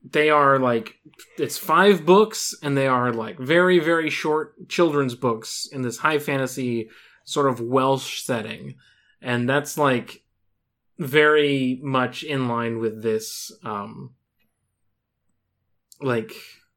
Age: 20-39